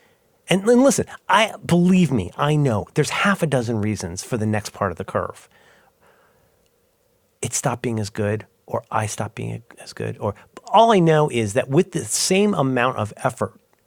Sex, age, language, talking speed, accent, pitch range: male, 30-49, English, 185 wpm, American, 120-180 Hz